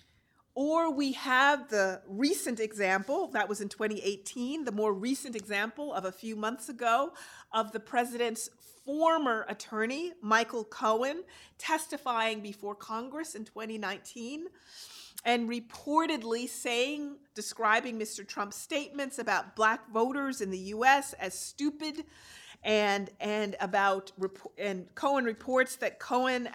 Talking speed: 120 wpm